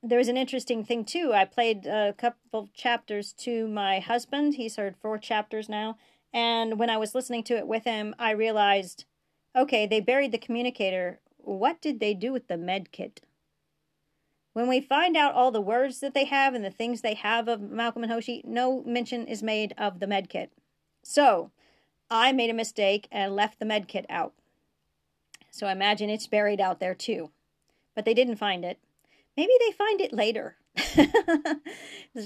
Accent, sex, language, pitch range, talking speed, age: American, female, English, 195-240 Hz, 190 wpm, 40-59